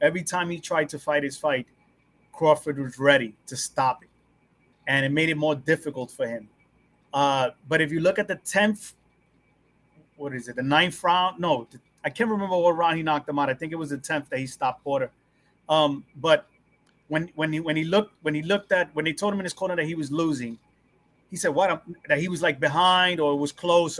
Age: 30-49